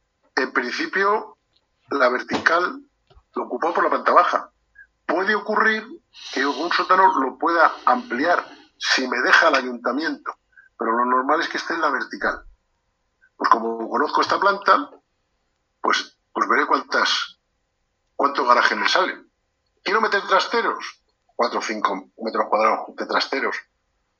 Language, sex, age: Spanish, male, 50-69